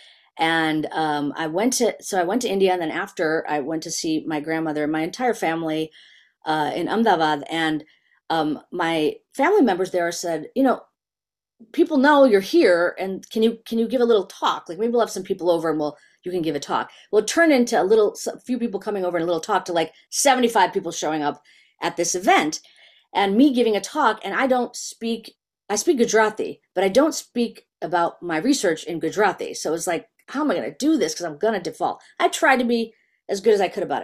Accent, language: American, English